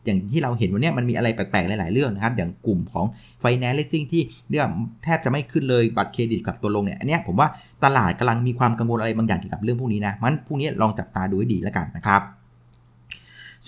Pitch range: 105-130 Hz